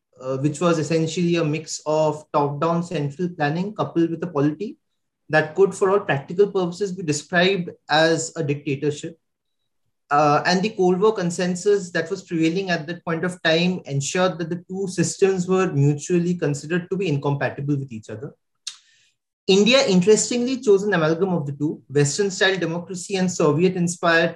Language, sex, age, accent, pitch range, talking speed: Bengali, male, 30-49, native, 155-190 Hz, 160 wpm